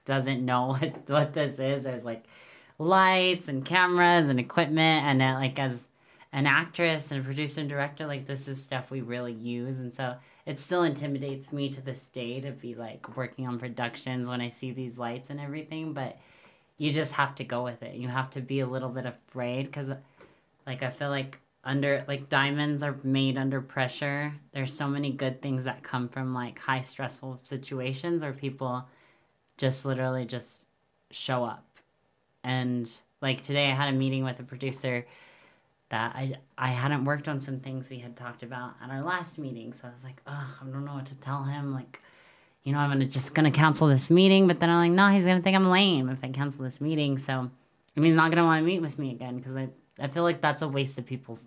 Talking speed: 215 wpm